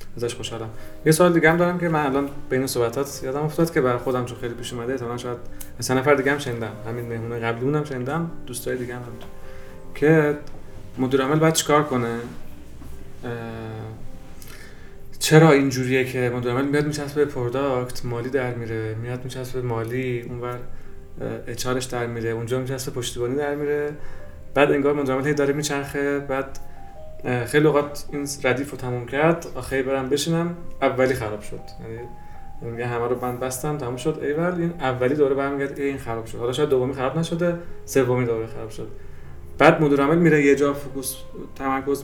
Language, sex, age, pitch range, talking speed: Persian, male, 30-49, 115-145 Hz, 165 wpm